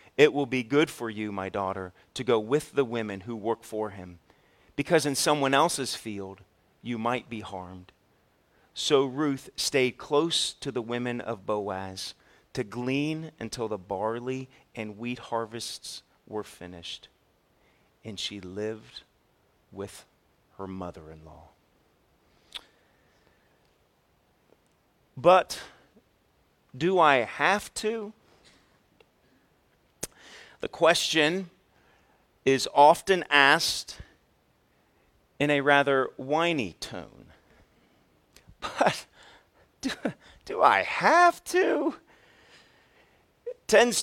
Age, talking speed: 40-59, 100 wpm